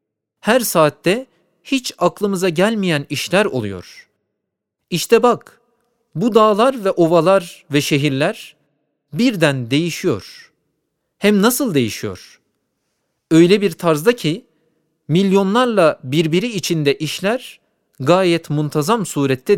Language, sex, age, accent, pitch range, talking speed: Turkish, male, 40-59, native, 140-195 Hz, 95 wpm